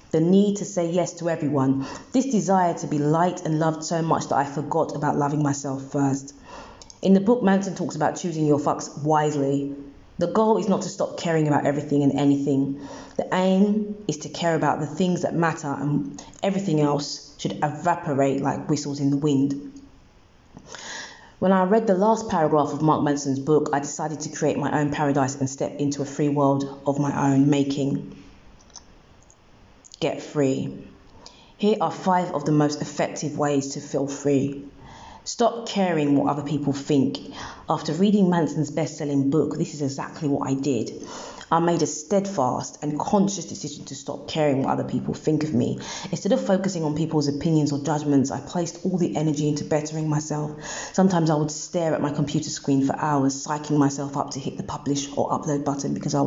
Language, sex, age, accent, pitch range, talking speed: English, female, 20-39, British, 140-165 Hz, 185 wpm